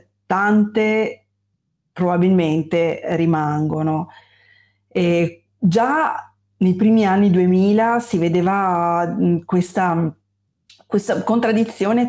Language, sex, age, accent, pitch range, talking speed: Italian, female, 30-49, native, 170-200 Hz, 65 wpm